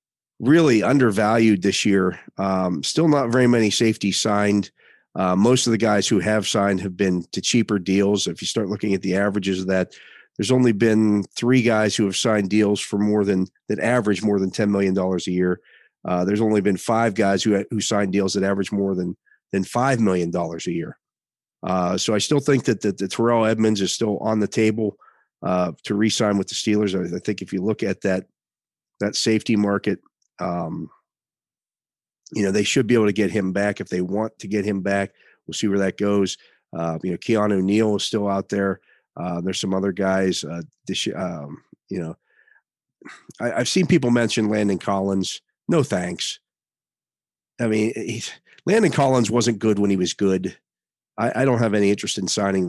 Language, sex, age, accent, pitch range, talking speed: English, male, 40-59, American, 95-110 Hz, 200 wpm